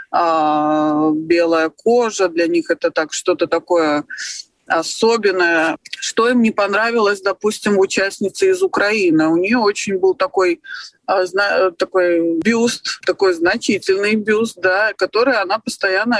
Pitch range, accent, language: 175-285 Hz, native, Russian